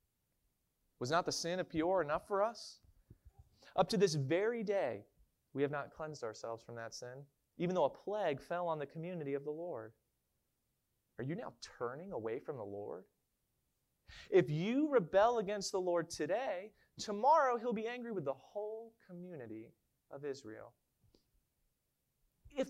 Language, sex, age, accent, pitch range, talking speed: English, male, 30-49, American, 130-210 Hz, 155 wpm